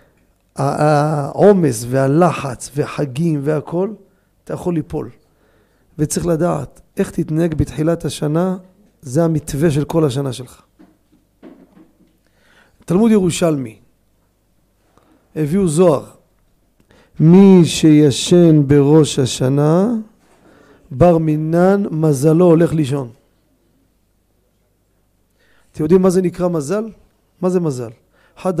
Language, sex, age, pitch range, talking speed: Hebrew, male, 40-59, 135-185 Hz, 90 wpm